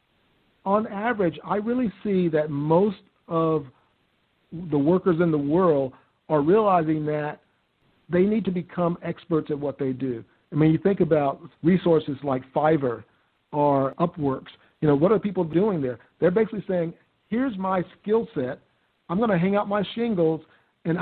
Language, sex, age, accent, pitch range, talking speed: English, male, 50-69, American, 150-190 Hz, 165 wpm